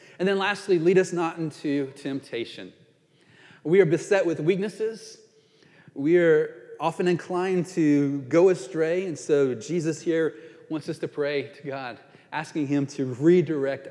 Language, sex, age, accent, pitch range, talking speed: English, male, 40-59, American, 150-205 Hz, 145 wpm